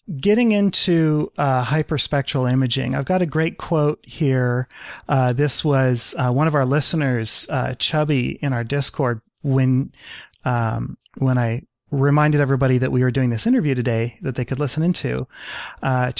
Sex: male